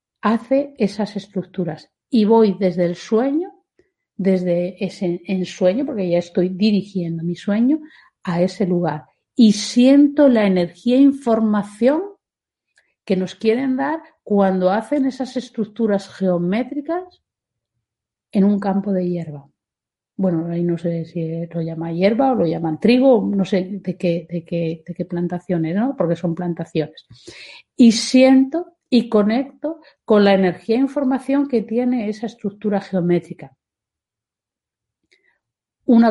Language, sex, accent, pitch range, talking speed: Spanish, female, Spanish, 175-240 Hz, 135 wpm